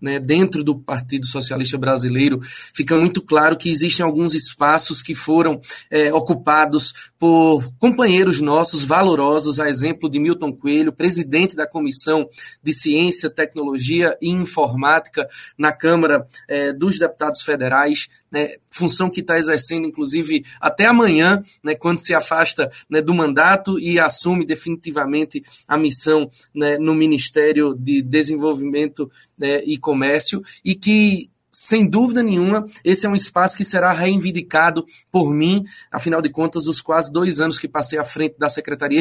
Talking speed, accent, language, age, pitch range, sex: 140 wpm, Brazilian, Portuguese, 20-39, 150-175 Hz, male